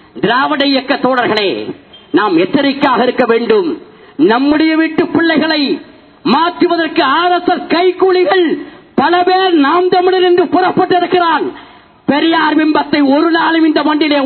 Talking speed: 115 wpm